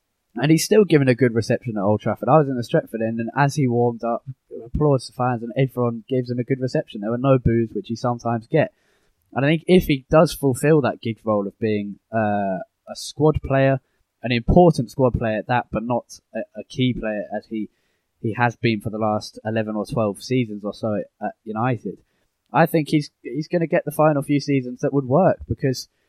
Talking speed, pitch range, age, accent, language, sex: 225 wpm, 115-135 Hz, 10-29, British, English, male